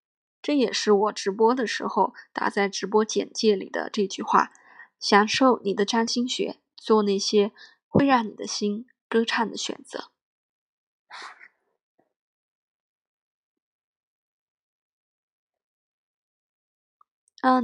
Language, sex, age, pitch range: Chinese, female, 20-39, 205-240 Hz